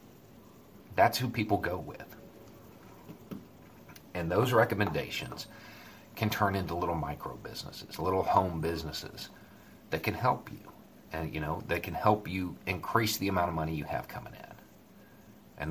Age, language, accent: 40-59, English, American